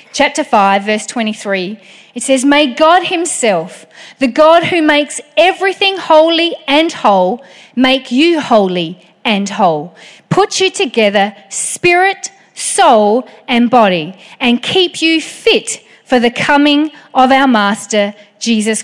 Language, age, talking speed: English, 40-59, 125 wpm